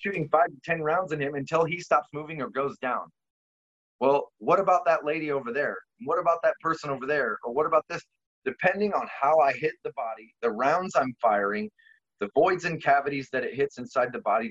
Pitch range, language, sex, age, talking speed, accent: 120-165 Hz, English, male, 30-49, 215 wpm, American